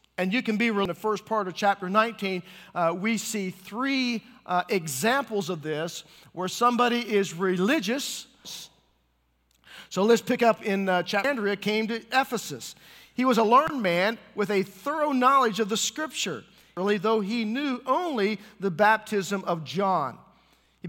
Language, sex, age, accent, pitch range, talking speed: English, male, 50-69, American, 185-235 Hz, 165 wpm